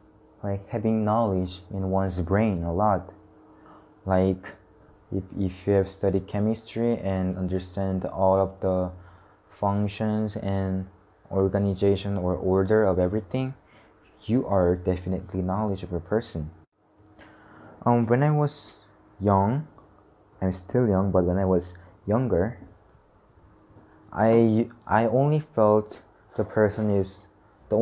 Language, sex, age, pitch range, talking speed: English, male, 20-39, 95-105 Hz, 120 wpm